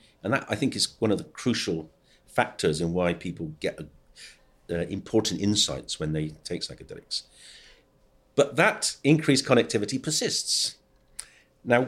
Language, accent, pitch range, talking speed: English, British, 90-125 Hz, 135 wpm